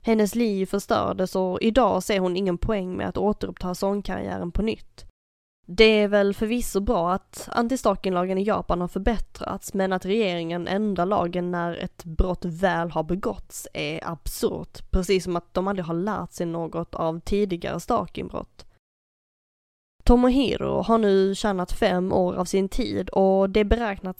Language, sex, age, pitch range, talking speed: Swedish, female, 10-29, 180-210 Hz, 160 wpm